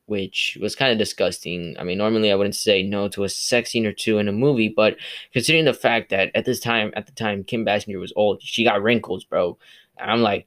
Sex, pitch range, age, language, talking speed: male, 105-120 Hz, 10-29, English, 245 wpm